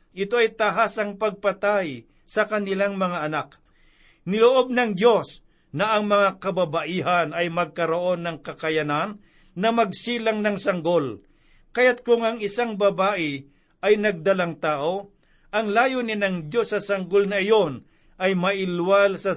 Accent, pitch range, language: native, 170-210 Hz, Filipino